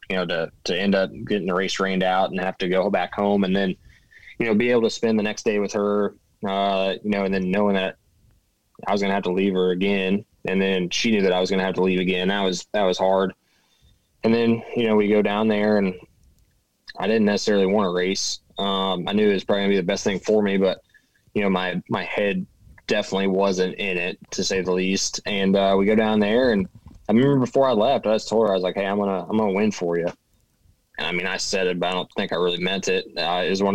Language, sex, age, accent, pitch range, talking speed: English, male, 20-39, American, 95-105 Hz, 270 wpm